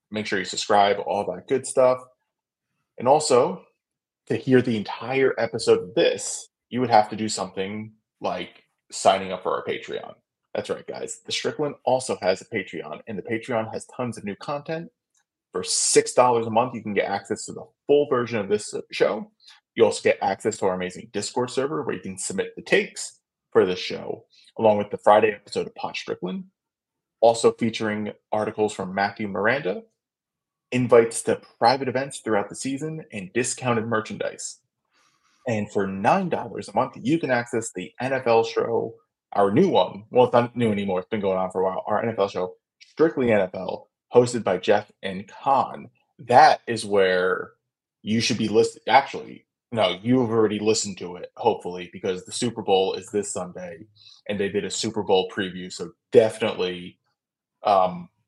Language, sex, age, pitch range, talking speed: English, male, 20-39, 105-150 Hz, 175 wpm